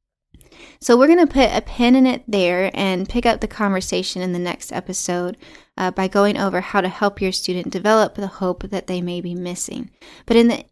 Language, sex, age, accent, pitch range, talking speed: English, female, 10-29, American, 190-255 Hz, 220 wpm